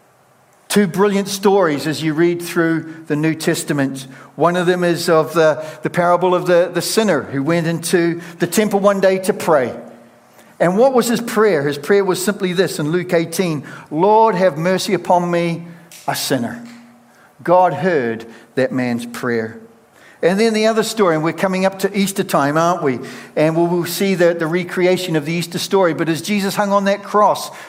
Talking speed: 195 wpm